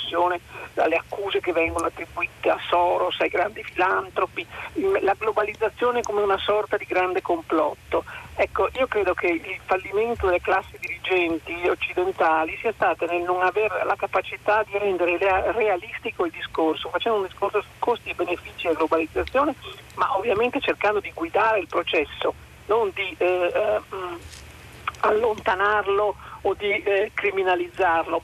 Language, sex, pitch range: Italian, male, 180-230 Hz